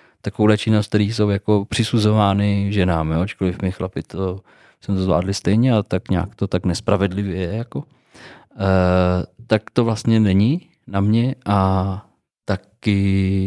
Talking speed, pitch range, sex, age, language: 145 wpm, 95-120 Hz, male, 20-39, Czech